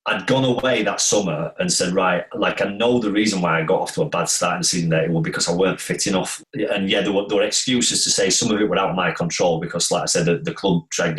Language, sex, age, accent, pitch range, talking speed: English, male, 30-49, British, 85-130 Hz, 305 wpm